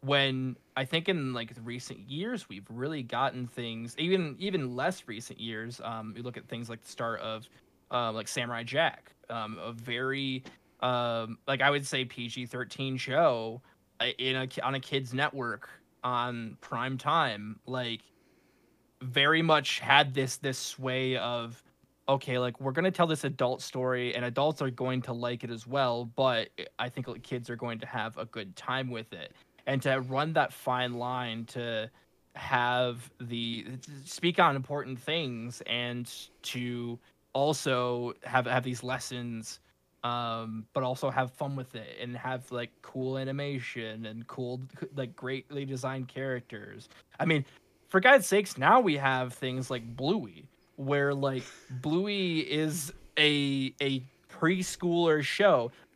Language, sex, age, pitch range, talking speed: English, male, 20-39, 120-140 Hz, 160 wpm